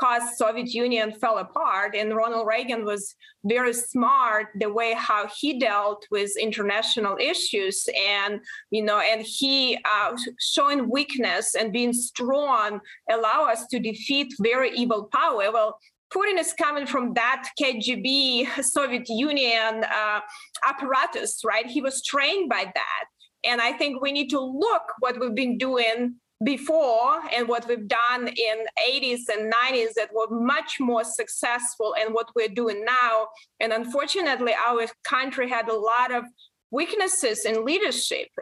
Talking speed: 150 wpm